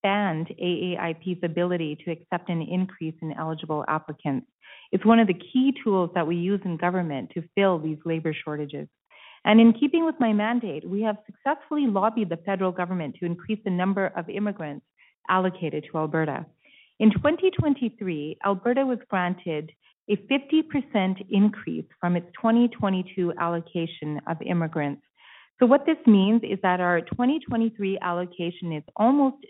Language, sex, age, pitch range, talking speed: English, female, 40-59, 165-210 Hz, 150 wpm